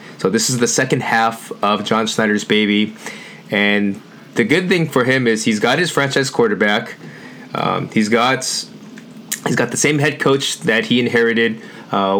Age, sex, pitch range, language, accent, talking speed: 20-39, male, 115-155 Hz, English, American, 170 wpm